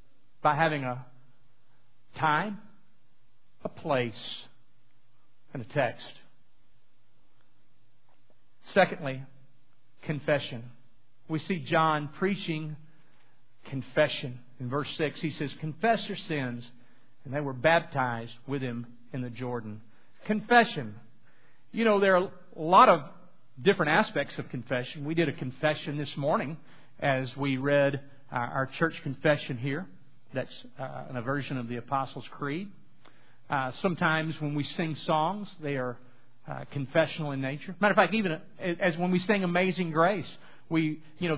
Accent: American